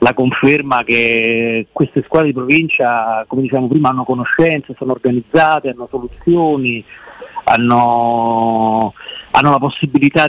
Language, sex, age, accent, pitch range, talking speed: Italian, male, 30-49, native, 125-145 Hz, 115 wpm